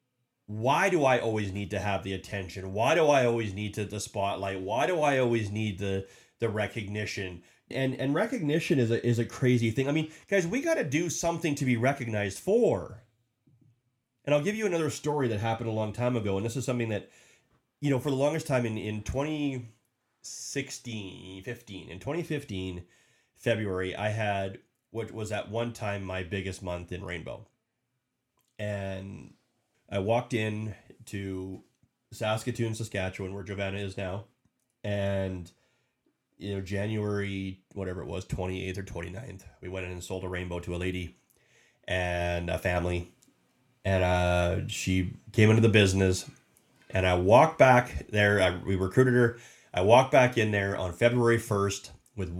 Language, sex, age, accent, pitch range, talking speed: English, male, 30-49, American, 95-125 Hz, 165 wpm